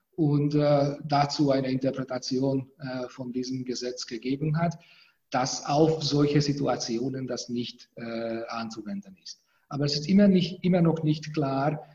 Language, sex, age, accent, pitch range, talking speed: English, male, 40-59, German, 130-165 Hz, 145 wpm